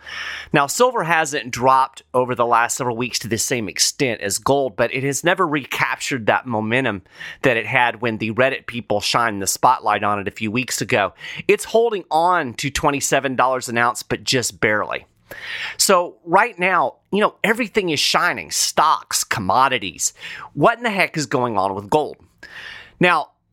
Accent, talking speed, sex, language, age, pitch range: American, 175 wpm, male, English, 30-49, 115-160 Hz